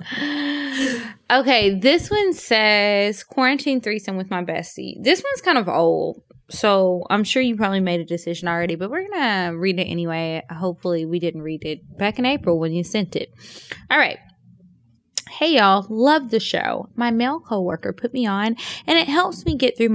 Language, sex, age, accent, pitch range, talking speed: English, female, 10-29, American, 180-250 Hz, 180 wpm